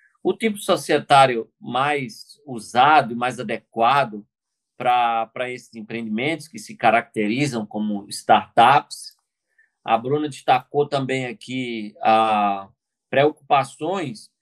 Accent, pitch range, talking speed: Brazilian, 115-145 Hz, 90 wpm